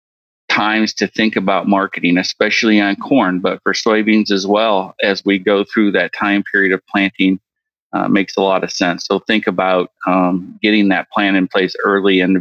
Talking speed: 195 wpm